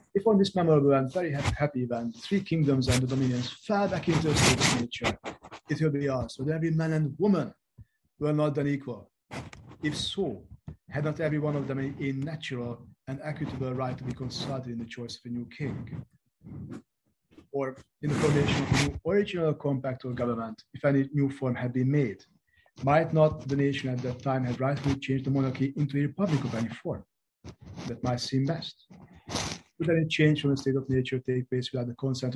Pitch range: 125-150 Hz